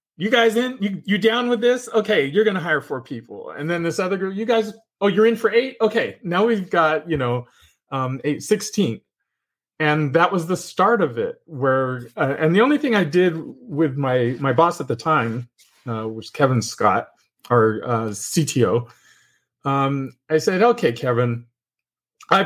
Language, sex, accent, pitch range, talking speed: English, male, American, 120-180 Hz, 190 wpm